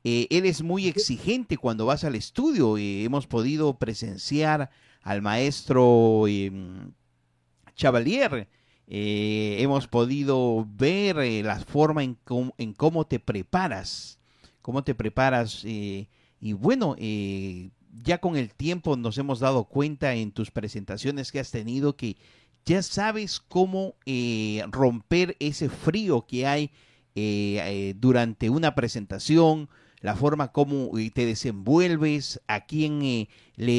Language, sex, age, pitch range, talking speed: Spanish, male, 50-69, 115-155 Hz, 130 wpm